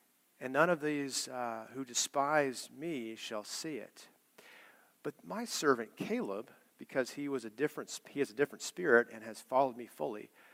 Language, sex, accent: English, male, American